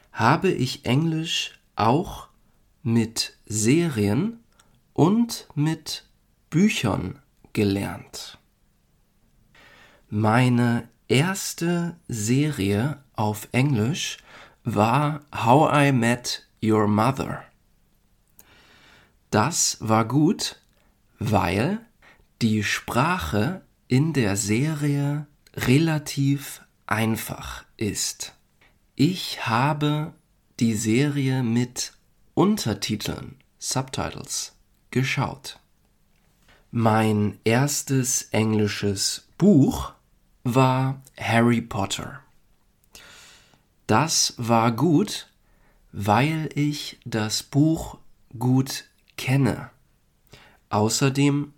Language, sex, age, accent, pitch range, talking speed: German, male, 40-59, German, 110-145 Hz, 65 wpm